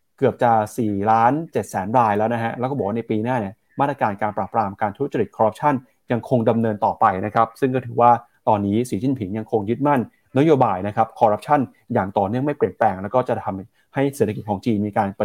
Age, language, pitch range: 20-39, Thai, 110-135 Hz